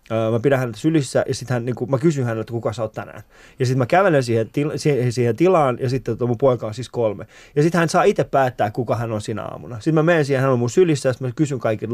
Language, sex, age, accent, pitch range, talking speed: Finnish, male, 20-39, native, 115-170 Hz, 275 wpm